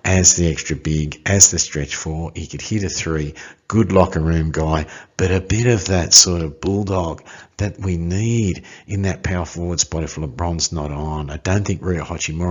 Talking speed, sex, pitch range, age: 195 wpm, male, 80-100 Hz, 50-69